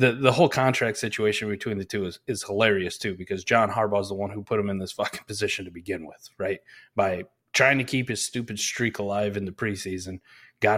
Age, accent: 20-39, American